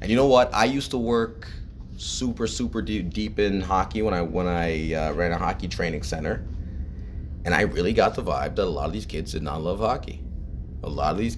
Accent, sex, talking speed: American, male, 225 wpm